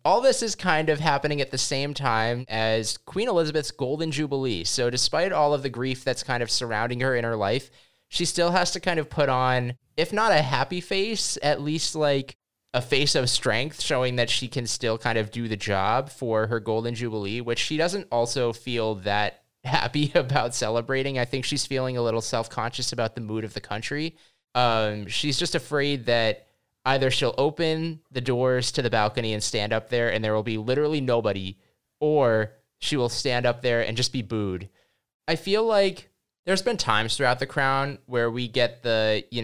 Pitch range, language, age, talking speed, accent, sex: 110-140 Hz, English, 20-39, 200 wpm, American, male